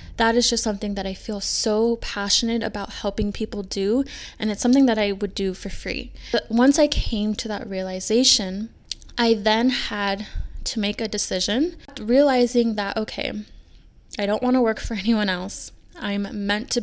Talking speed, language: 180 wpm, English